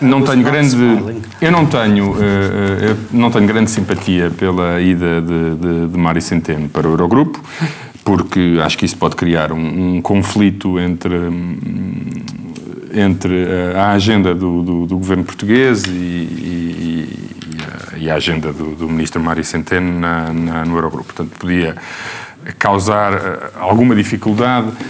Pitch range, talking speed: 90-120 Hz, 115 wpm